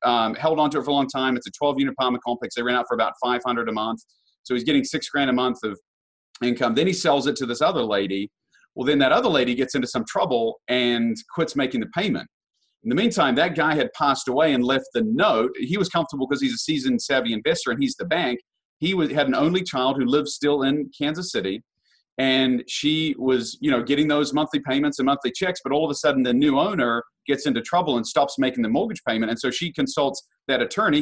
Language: English